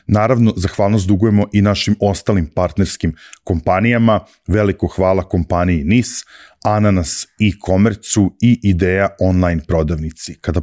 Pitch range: 90-110 Hz